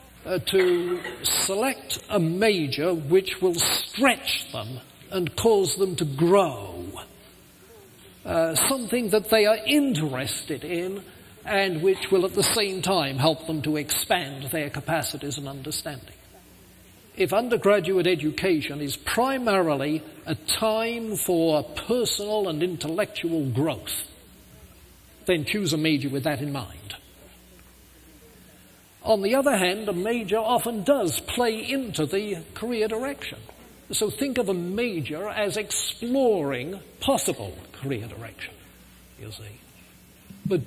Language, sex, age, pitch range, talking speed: English, male, 50-69, 150-215 Hz, 120 wpm